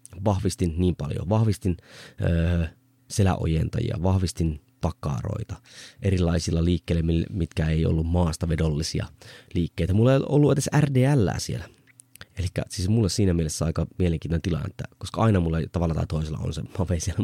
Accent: native